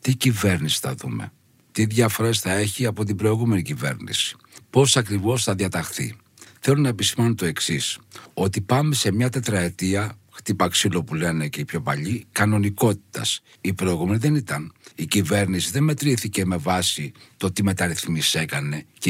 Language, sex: Greek, male